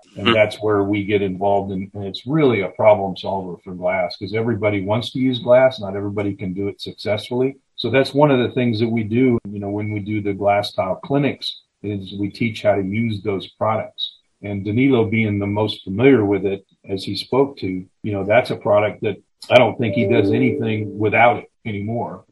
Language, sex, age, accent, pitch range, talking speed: English, male, 40-59, American, 100-115 Hz, 210 wpm